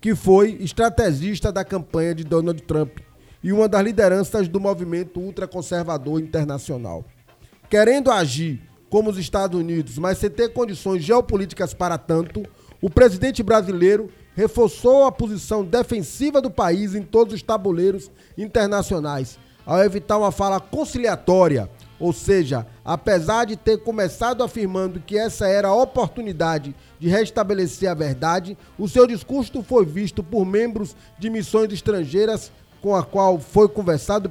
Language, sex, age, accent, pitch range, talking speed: Portuguese, male, 20-39, Brazilian, 170-220 Hz, 140 wpm